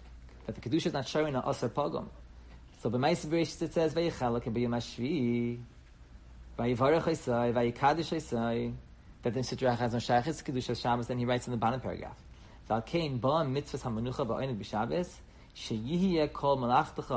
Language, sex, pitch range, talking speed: English, male, 110-155 Hz, 75 wpm